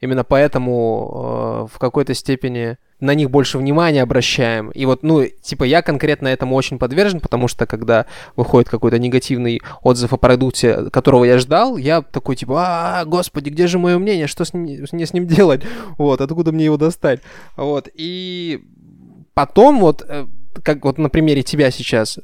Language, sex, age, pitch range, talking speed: Russian, male, 20-39, 130-175 Hz, 170 wpm